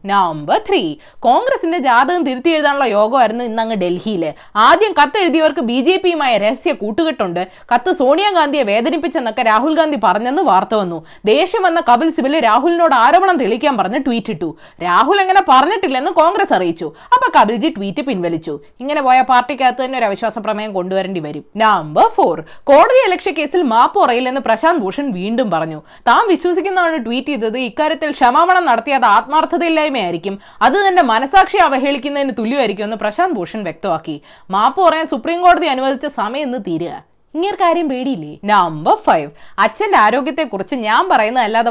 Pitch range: 220-335 Hz